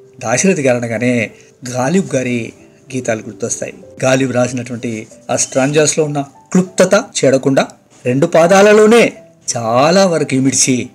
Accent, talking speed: native, 105 wpm